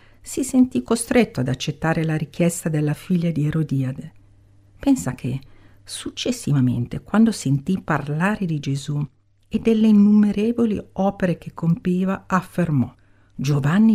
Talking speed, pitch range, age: 115 wpm, 140-200 Hz, 50-69